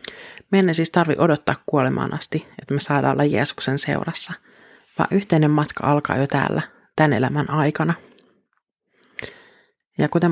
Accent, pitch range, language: native, 140-160 Hz, Finnish